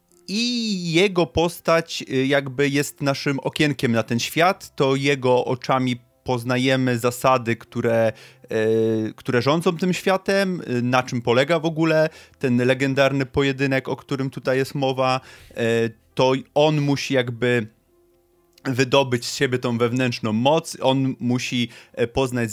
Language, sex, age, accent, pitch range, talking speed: Polish, male, 30-49, native, 125-165 Hz, 125 wpm